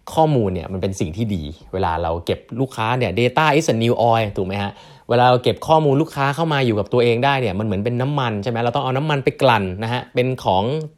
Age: 20-39